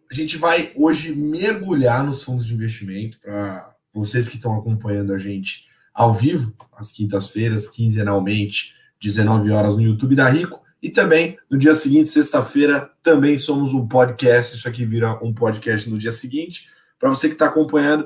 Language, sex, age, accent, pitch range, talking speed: Portuguese, male, 20-39, Brazilian, 120-160 Hz, 165 wpm